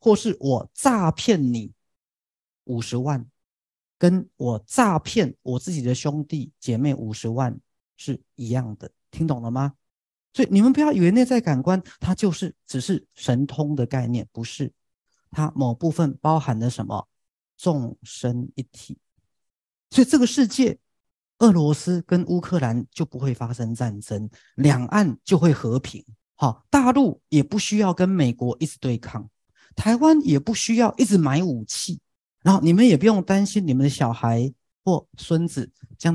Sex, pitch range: male, 120-170 Hz